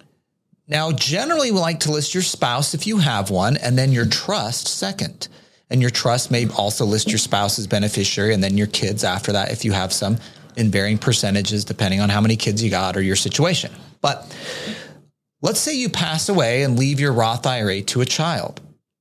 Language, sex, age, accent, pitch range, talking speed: English, male, 40-59, American, 115-160 Hz, 200 wpm